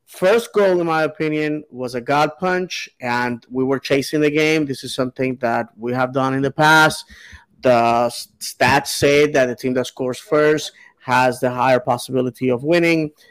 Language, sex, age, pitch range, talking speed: English, male, 30-49, 125-150 Hz, 180 wpm